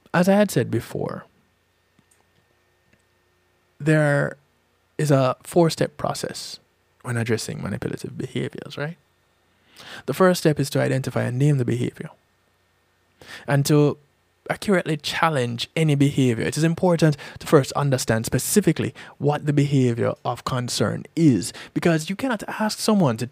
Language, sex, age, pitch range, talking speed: English, male, 20-39, 120-160 Hz, 130 wpm